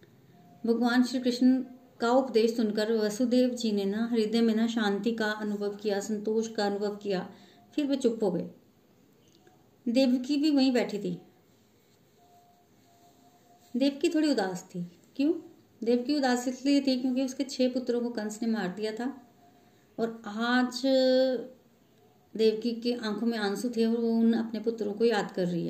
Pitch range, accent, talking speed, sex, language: 220-260 Hz, native, 155 wpm, female, Hindi